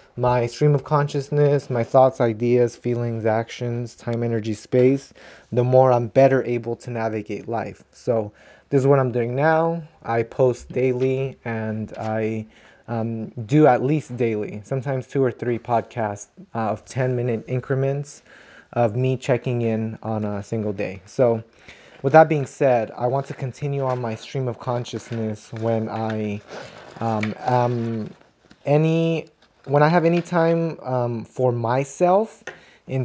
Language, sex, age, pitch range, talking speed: English, male, 20-39, 115-135 Hz, 150 wpm